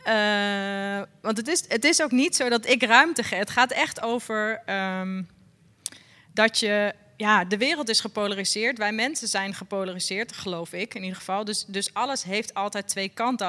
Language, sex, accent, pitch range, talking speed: Dutch, female, Dutch, 180-220 Hz, 180 wpm